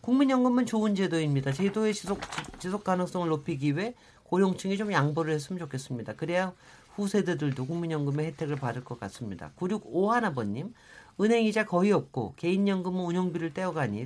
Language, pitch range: Korean, 145-205 Hz